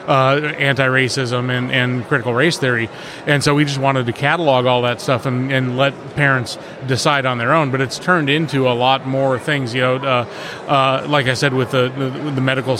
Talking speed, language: 210 wpm, English